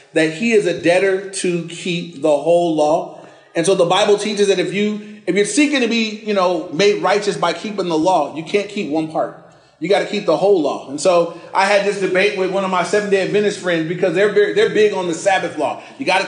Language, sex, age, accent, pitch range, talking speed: English, male, 30-49, American, 170-225 Hz, 260 wpm